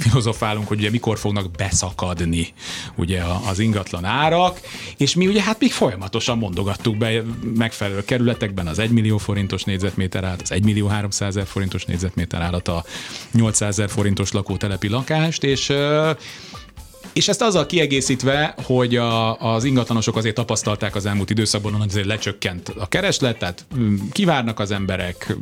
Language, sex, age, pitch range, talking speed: Hungarian, male, 30-49, 100-120 Hz, 145 wpm